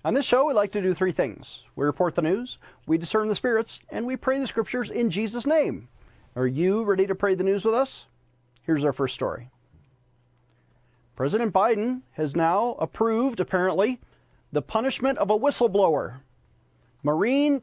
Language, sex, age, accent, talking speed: English, male, 40-59, American, 170 wpm